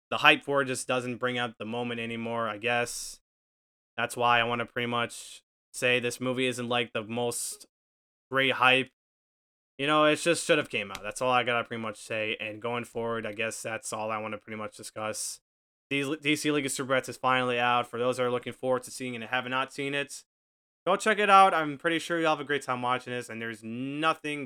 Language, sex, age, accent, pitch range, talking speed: English, male, 20-39, American, 120-155 Hz, 240 wpm